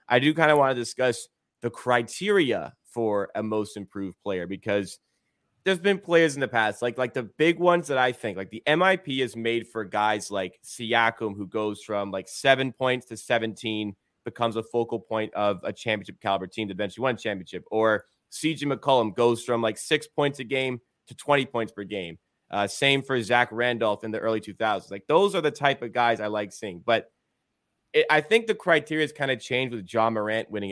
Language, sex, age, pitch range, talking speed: English, male, 30-49, 105-130 Hz, 205 wpm